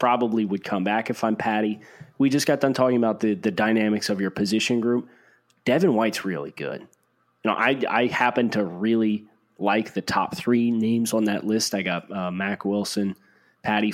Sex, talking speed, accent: male, 195 wpm, American